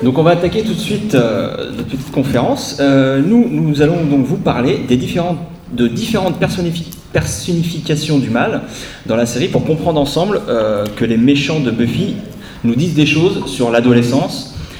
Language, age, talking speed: French, 30-49, 180 wpm